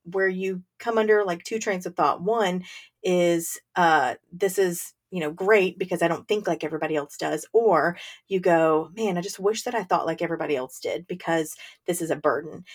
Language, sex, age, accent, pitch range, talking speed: English, female, 40-59, American, 175-215 Hz, 205 wpm